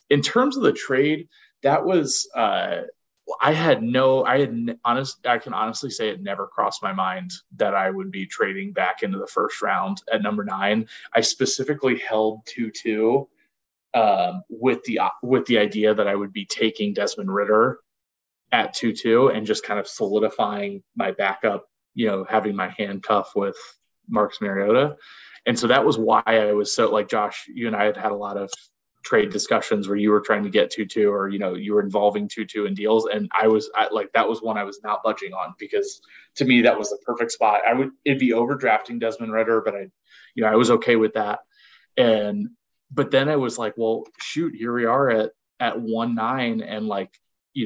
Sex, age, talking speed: male, 20-39, 210 wpm